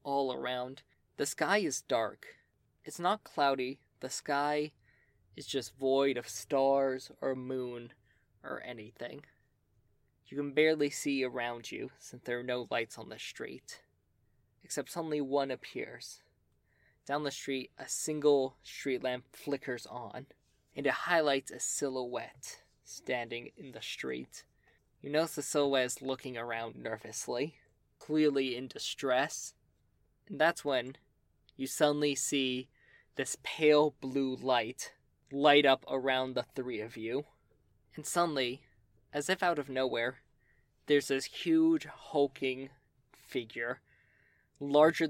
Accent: American